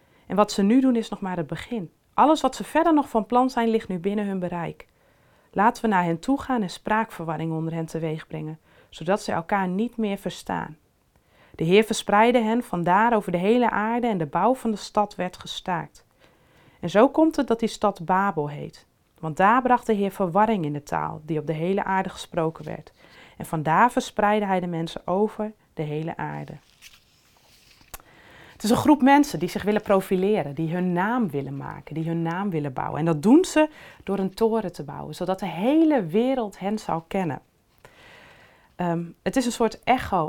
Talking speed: 200 wpm